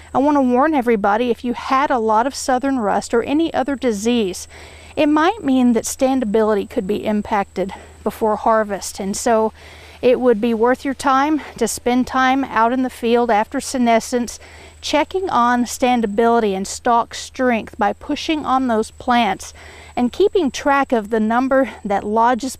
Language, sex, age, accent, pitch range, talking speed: English, female, 40-59, American, 215-260 Hz, 165 wpm